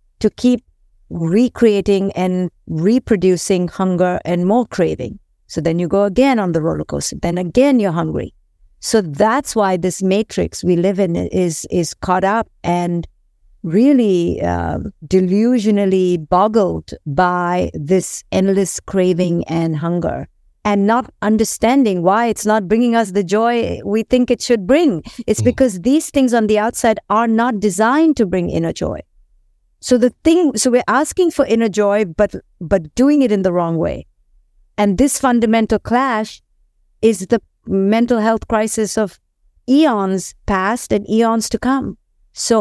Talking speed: 150 wpm